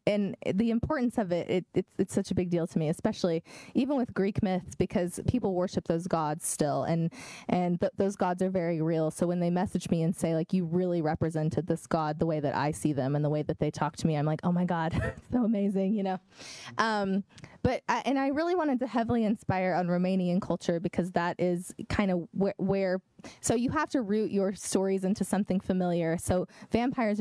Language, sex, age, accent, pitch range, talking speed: English, female, 20-39, American, 170-205 Hz, 225 wpm